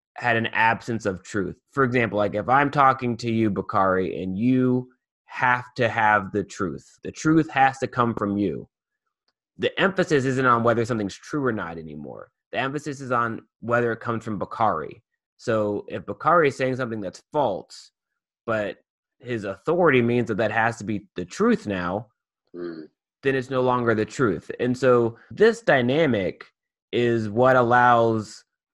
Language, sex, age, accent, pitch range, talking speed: English, male, 20-39, American, 100-125 Hz, 165 wpm